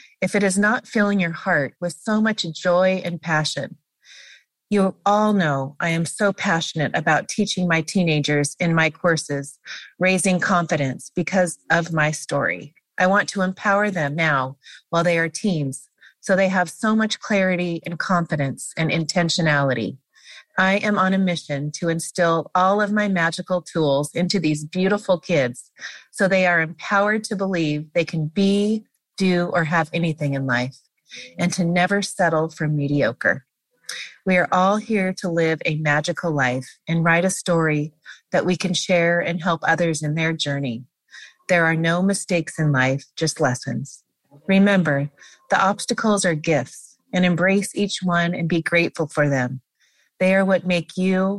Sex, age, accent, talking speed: female, 30-49, American, 165 wpm